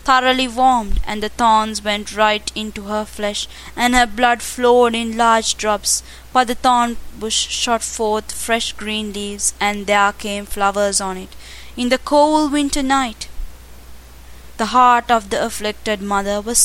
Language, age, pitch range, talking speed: English, 20-39, 205-255 Hz, 160 wpm